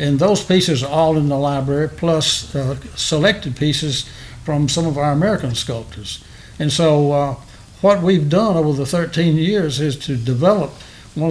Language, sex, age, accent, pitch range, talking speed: English, male, 60-79, American, 130-160 Hz, 170 wpm